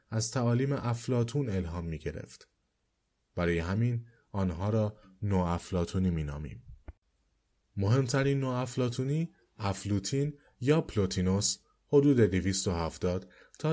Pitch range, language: 90-120 Hz, Persian